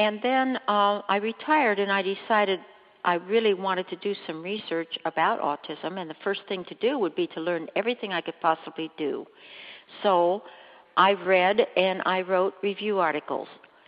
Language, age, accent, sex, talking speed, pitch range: English, 60-79, American, female, 175 wpm, 170-205 Hz